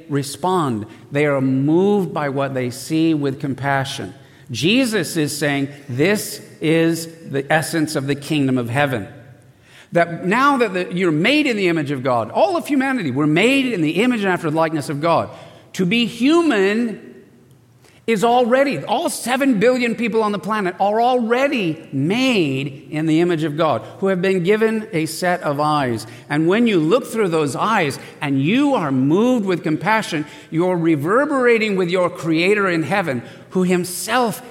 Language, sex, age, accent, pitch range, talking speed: English, male, 50-69, American, 140-195 Hz, 170 wpm